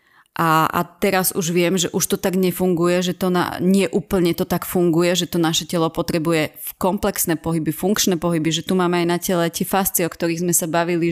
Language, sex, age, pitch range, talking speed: Slovak, female, 30-49, 160-190 Hz, 205 wpm